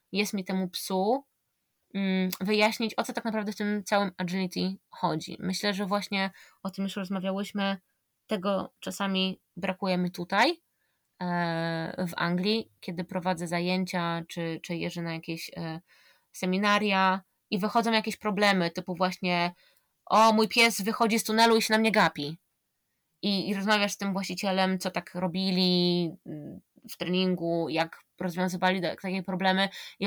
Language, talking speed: Polish, 140 wpm